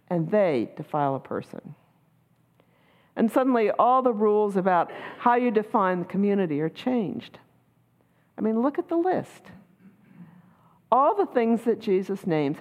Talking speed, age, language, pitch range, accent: 145 wpm, 50-69, English, 175-230 Hz, American